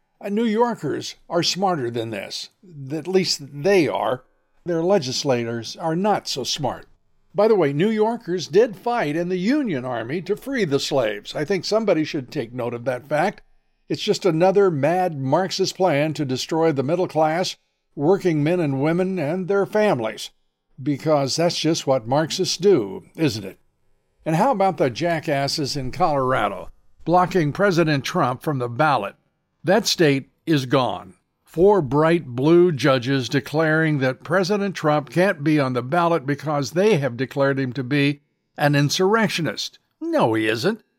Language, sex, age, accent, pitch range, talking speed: English, male, 60-79, American, 140-190 Hz, 160 wpm